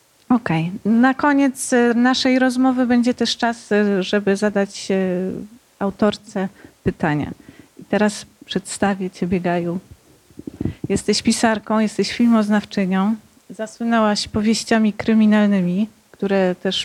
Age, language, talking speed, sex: 30-49, Polish, 90 wpm, female